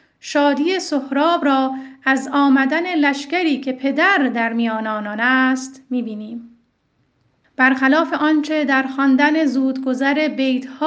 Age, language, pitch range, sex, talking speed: 40-59, Persian, 245-295 Hz, female, 105 wpm